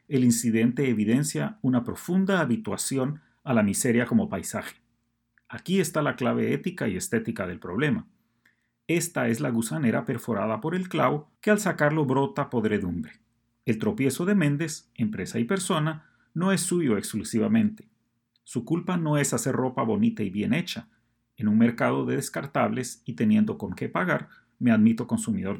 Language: Spanish